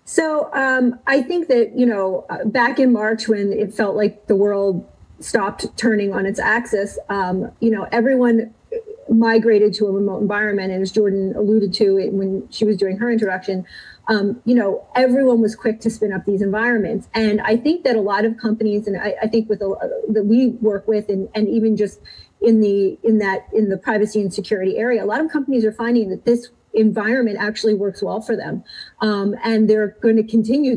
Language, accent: English, American